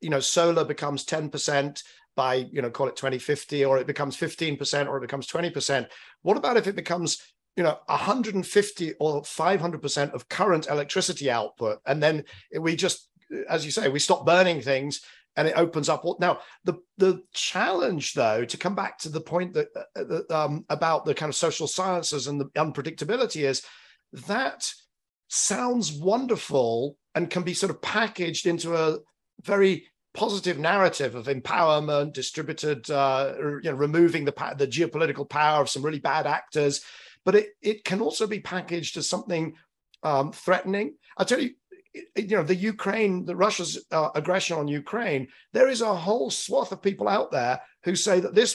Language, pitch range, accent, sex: English, 145-190 Hz, British, male